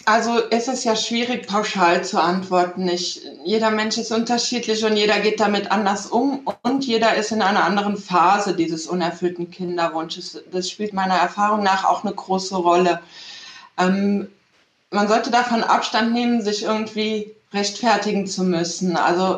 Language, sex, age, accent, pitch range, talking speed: German, female, 20-39, German, 190-225 Hz, 150 wpm